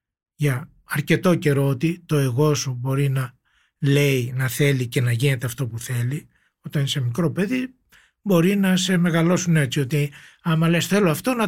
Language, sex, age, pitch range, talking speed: Greek, male, 60-79, 140-180 Hz, 175 wpm